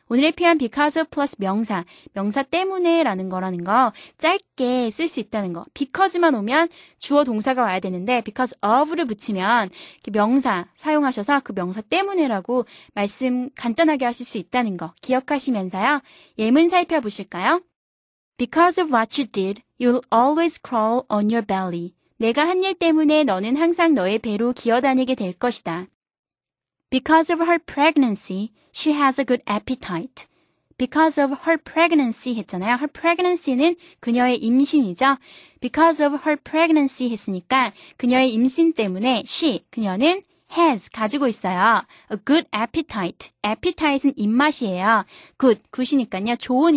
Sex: female